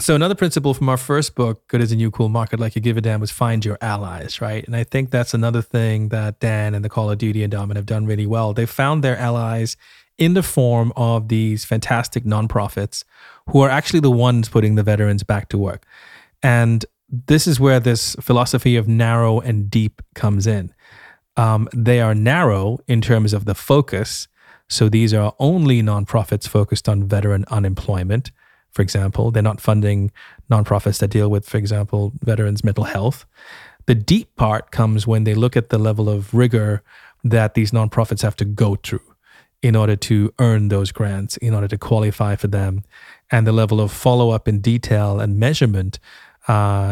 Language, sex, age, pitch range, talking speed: English, male, 30-49, 105-120 Hz, 190 wpm